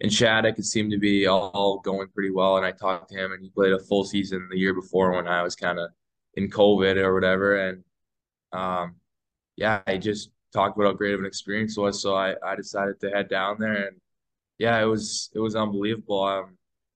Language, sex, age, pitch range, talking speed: English, male, 10-29, 95-105 Hz, 225 wpm